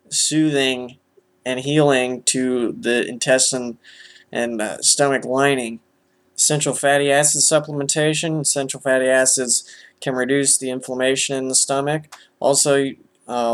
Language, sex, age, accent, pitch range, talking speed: English, male, 20-39, American, 120-145 Hz, 115 wpm